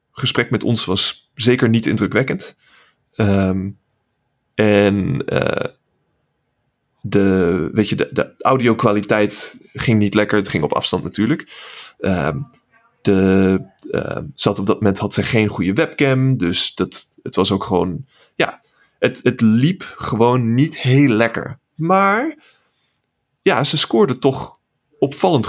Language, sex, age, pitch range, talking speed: Dutch, male, 20-39, 105-145 Hz, 125 wpm